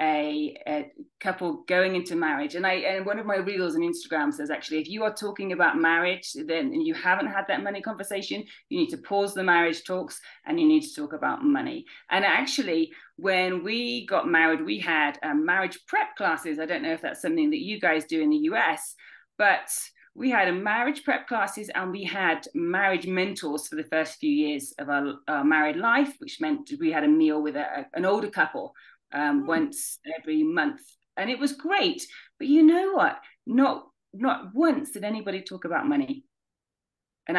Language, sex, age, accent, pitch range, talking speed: English, female, 30-49, British, 185-300 Hz, 195 wpm